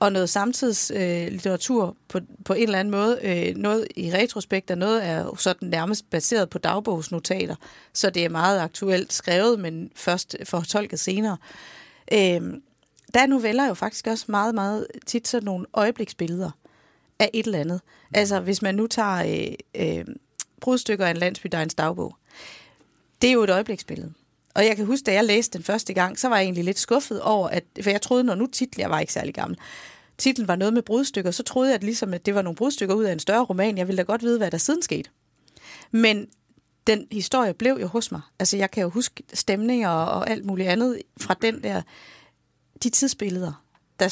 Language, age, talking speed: Danish, 40-59, 200 wpm